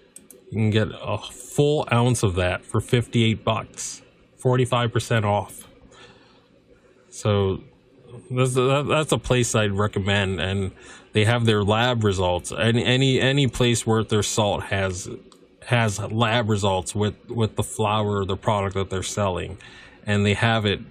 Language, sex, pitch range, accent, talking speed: English, male, 95-120 Hz, American, 145 wpm